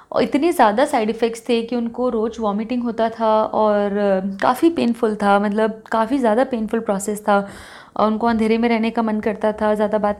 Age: 30-49